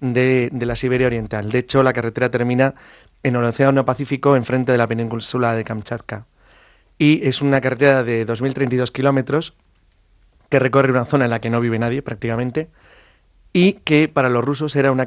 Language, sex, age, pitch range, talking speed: English, male, 30-49, 115-135 Hz, 180 wpm